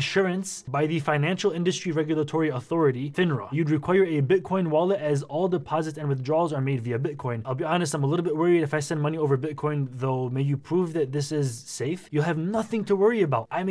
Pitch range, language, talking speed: 130-170 Hz, English, 225 wpm